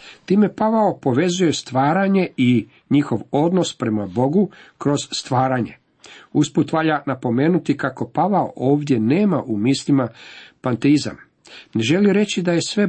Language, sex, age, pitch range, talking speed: Croatian, male, 50-69, 120-150 Hz, 125 wpm